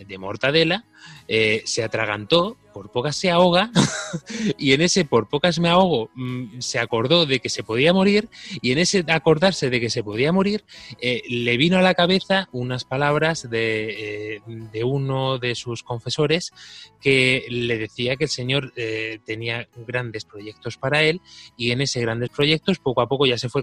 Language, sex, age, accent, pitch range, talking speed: Spanish, male, 20-39, Spanish, 120-155 Hz, 175 wpm